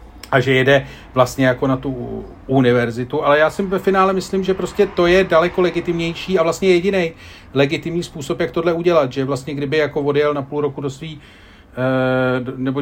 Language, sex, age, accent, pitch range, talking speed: Czech, male, 40-59, native, 135-205 Hz, 185 wpm